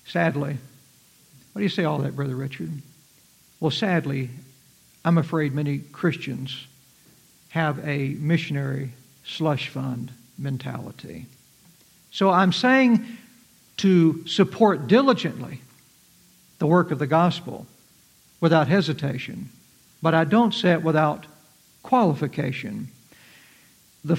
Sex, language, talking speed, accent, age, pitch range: male, English, 105 wpm, American, 60-79, 155-210 Hz